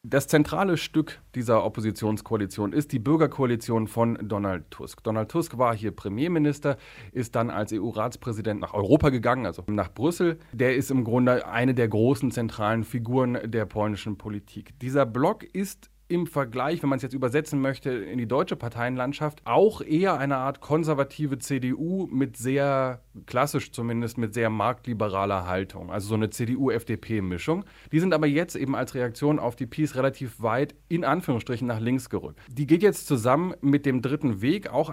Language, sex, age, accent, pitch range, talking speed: German, male, 30-49, German, 110-145 Hz, 165 wpm